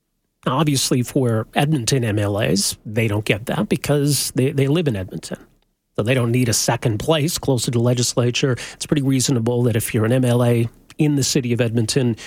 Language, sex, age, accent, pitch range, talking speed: English, male, 40-59, American, 115-150 Hz, 185 wpm